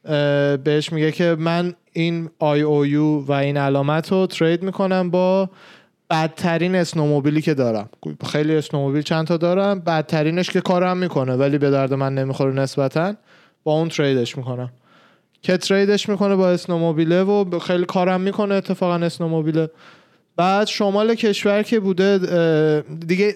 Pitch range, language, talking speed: 150-190 Hz, Persian, 140 wpm